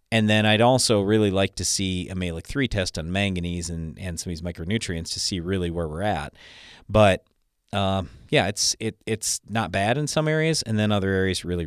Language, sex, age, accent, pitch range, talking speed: English, male, 40-59, American, 90-110 Hz, 215 wpm